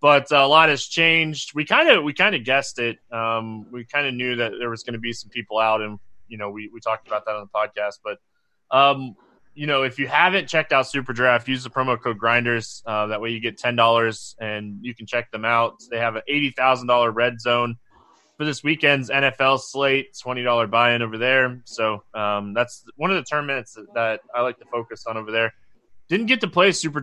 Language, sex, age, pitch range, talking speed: English, male, 20-39, 115-145 Hz, 225 wpm